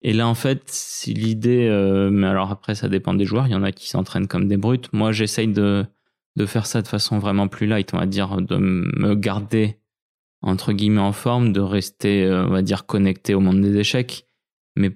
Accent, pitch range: French, 95-110 Hz